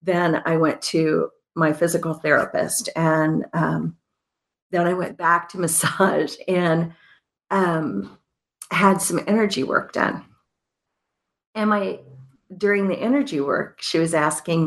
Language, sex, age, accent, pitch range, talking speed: English, female, 50-69, American, 155-210 Hz, 125 wpm